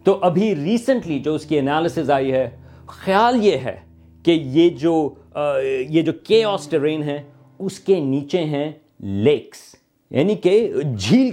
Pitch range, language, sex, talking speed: 145-205 Hz, Urdu, male, 155 wpm